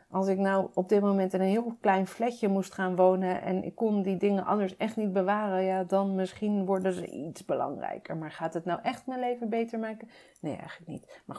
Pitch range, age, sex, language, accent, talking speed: 185-225 Hz, 40-59, female, Dutch, Dutch, 225 wpm